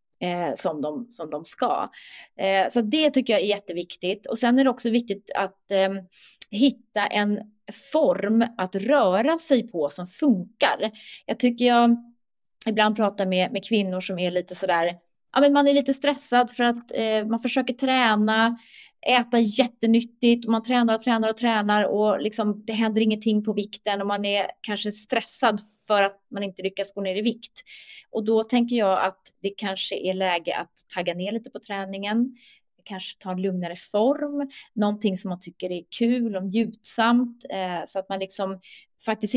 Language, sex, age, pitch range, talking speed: Swedish, female, 30-49, 190-235 Hz, 175 wpm